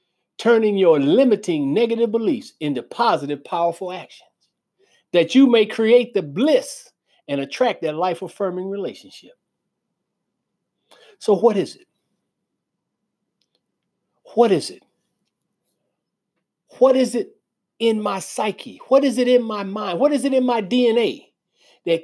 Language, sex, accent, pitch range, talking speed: English, male, American, 175-235 Hz, 125 wpm